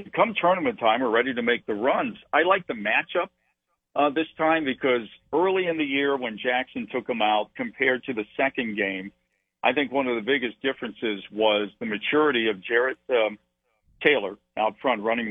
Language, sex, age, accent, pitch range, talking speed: English, male, 50-69, American, 110-135 Hz, 190 wpm